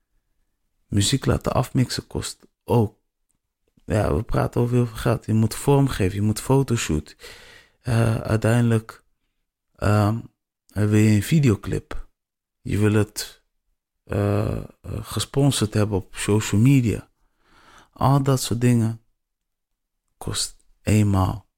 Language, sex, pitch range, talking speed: Dutch, male, 95-115 Hz, 110 wpm